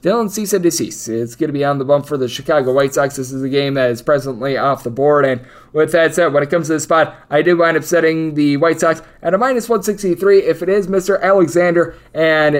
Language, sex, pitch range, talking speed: English, male, 140-175 Hz, 255 wpm